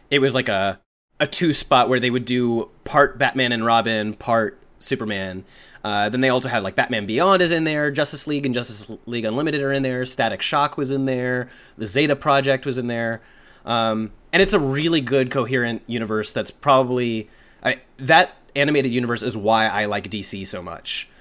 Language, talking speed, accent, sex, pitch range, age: English, 190 wpm, American, male, 110-140 Hz, 30-49